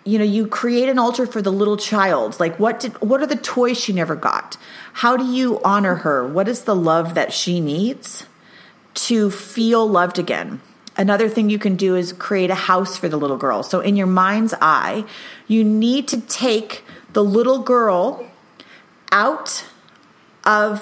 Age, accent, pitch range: 30-49, American, 185-235 Hz